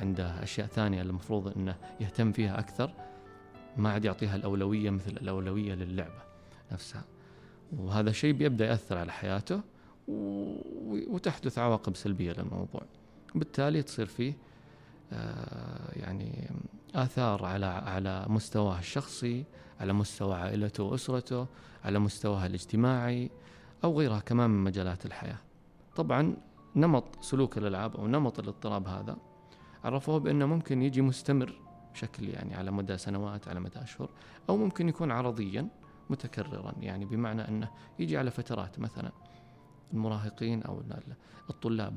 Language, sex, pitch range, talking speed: Arabic, male, 100-130 Hz, 120 wpm